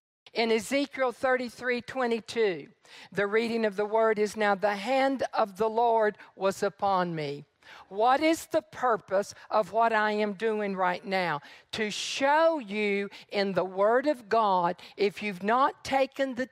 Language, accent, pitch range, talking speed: English, American, 200-240 Hz, 155 wpm